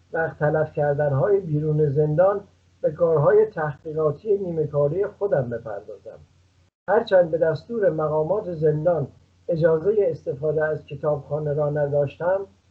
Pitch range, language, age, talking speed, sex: 150-205 Hz, Persian, 50-69, 105 wpm, male